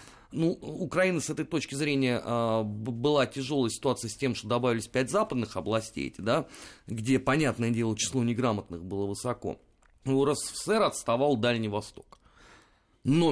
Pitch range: 110-155 Hz